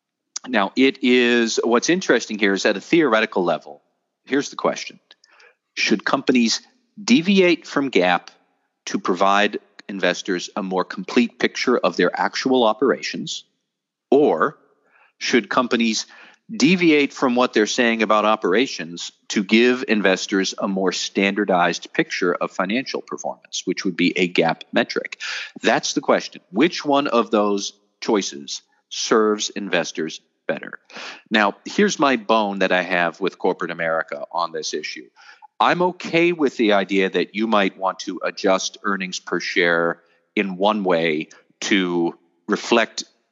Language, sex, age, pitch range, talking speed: English, male, 40-59, 100-140 Hz, 135 wpm